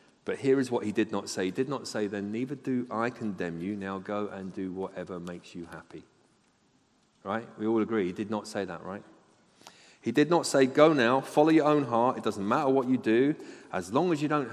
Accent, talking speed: British, 235 wpm